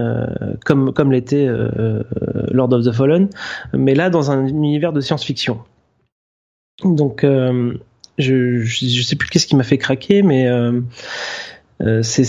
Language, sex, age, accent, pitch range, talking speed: French, male, 30-49, French, 115-145 Hz, 145 wpm